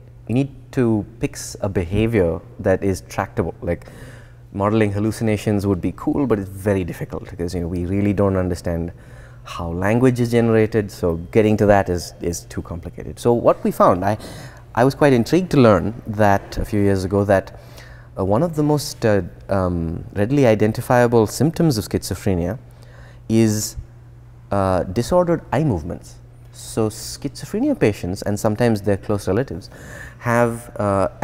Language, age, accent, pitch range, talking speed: English, 20-39, Indian, 100-120 Hz, 160 wpm